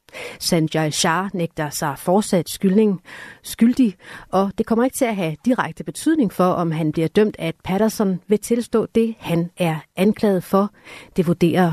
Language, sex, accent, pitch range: Danish, female, native, 160-225 Hz